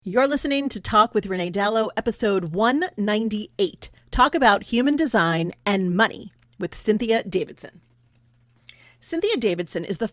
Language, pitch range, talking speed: English, 185-245 Hz, 130 wpm